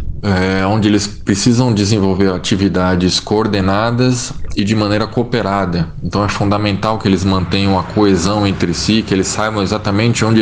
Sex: male